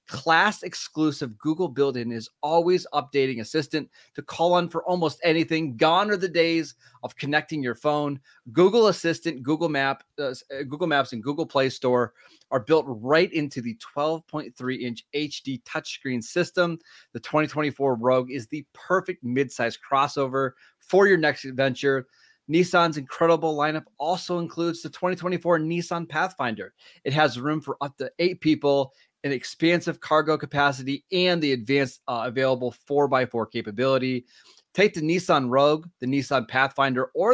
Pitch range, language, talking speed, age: 130-165 Hz, English, 145 wpm, 30-49